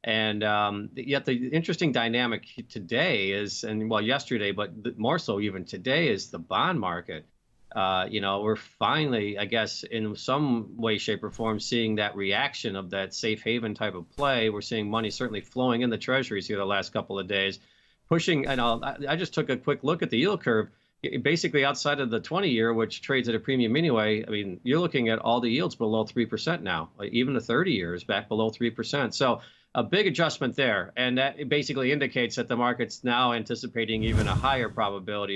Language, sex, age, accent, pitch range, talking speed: English, male, 40-59, American, 100-125 Hz, 205 wpm